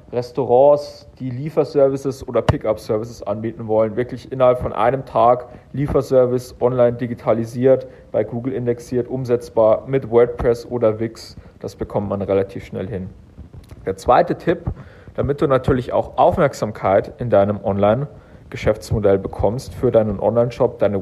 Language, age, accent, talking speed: German, 40-59, German, 130 wpm